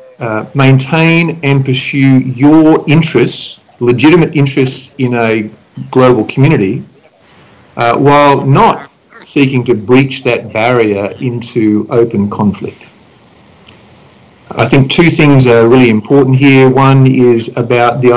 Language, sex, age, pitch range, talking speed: English, male, 50-69, 125-150 Hz, 115 wpm